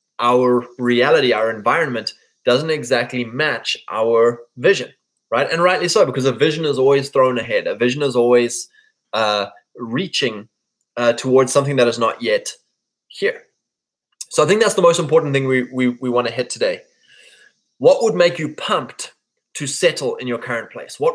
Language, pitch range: English, 125-205 Hz